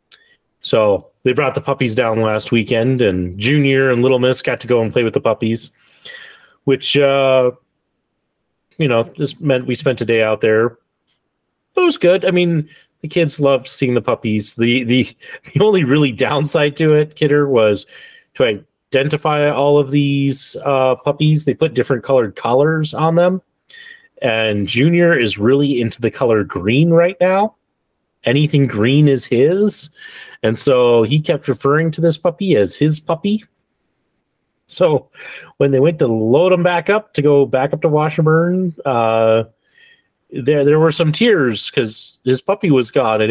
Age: 30-49